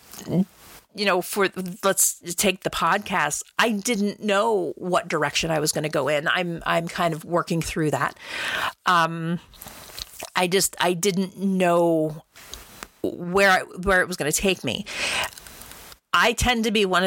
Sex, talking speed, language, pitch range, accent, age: female, 155 wpm, English, 170-205 Hz, American, 40-59